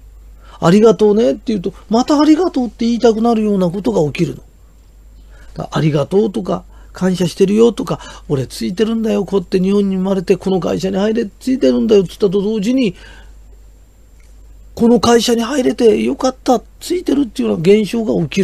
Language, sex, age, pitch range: Japanese, male, 40-59, 170-235 Hz